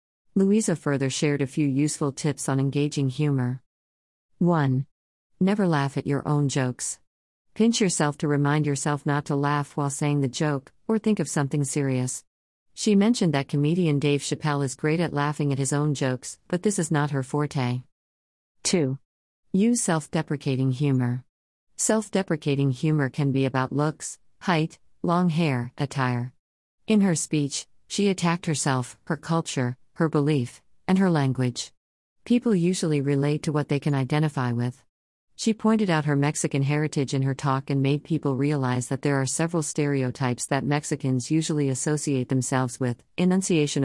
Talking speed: 160 wpm